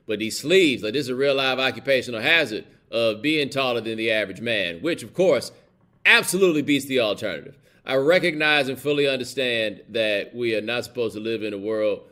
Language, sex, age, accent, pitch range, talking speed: English, male, 30-49, American, 105-135 Hz, 200 wpm